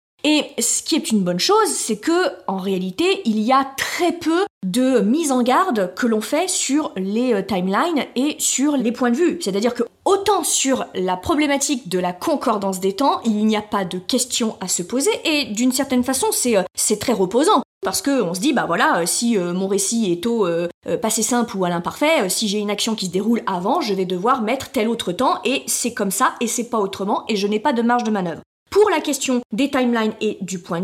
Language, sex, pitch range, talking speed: French, female, 205-295 Hz, 230 wpm